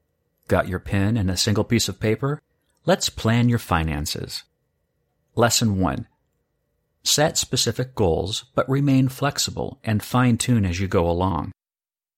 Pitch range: 95-125 Hz